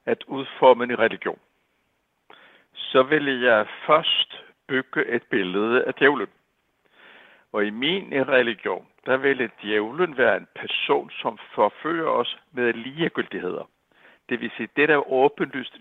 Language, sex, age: Danish, male, 60-79